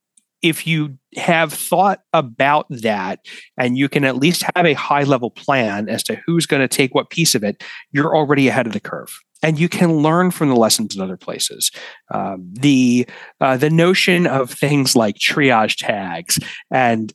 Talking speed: 180 wpm